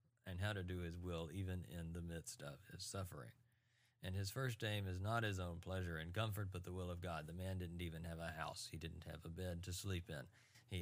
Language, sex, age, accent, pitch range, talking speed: English, male, 40-59, American, 90-115 Hz, 250 wpm